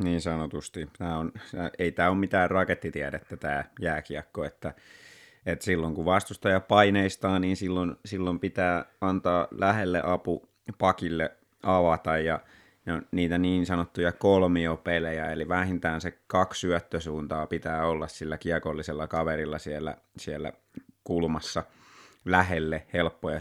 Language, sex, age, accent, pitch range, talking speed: Finnish, male, 30-49, native, 80-95 Hz, 120 wpm